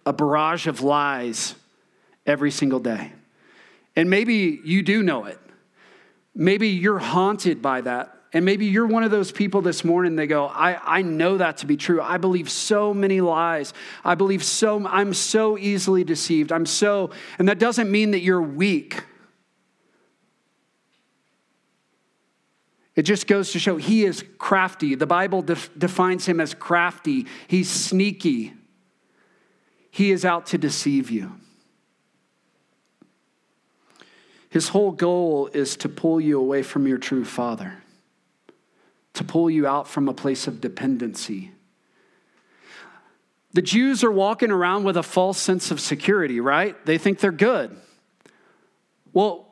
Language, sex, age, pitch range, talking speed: English, male, 40-59, 155-200 Hz, 145 wpm